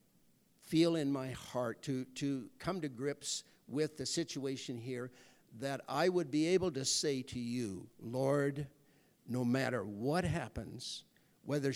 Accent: American